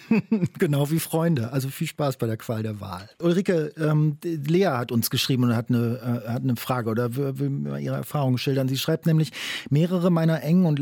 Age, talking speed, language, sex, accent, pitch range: 40-59, 200 wpm, German, male, German, 125-155 Hz